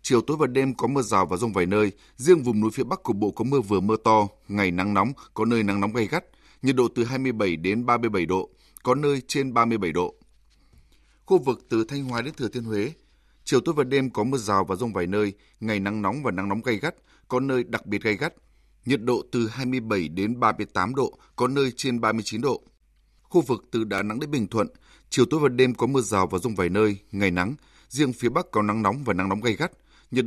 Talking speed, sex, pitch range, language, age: 245 wpm, male, 100-130 Hz, Vietnamese, 20-39